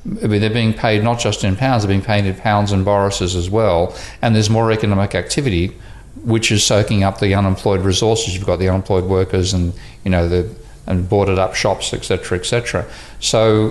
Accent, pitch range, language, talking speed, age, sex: Australian, 95-110 Hz, English, 200 wpm, 50-69, male